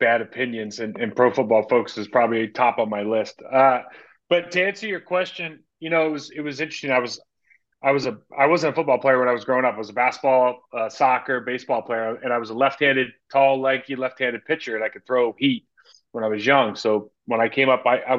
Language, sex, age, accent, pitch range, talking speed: English, male, 30-49, American, 115-140 Hz, 245 wpm